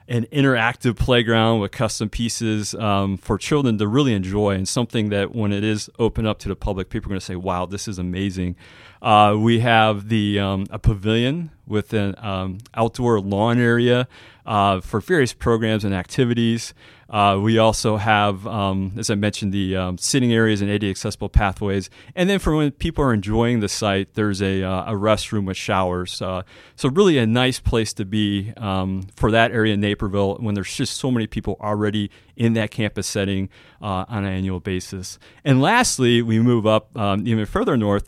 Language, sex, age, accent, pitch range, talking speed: English, male, 30-49, American, 100-115 Hz, 190 wpm